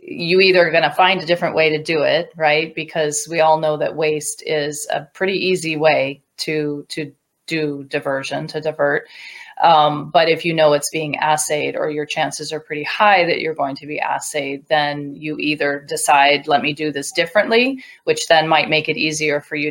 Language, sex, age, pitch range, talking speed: English, female, 30-49, 150-165 Hz, 200 wpm